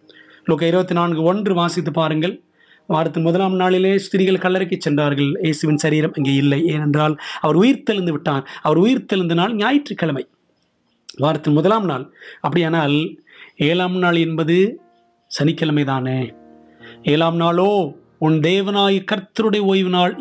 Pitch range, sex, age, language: 155-190 Hz, male, 30-49, English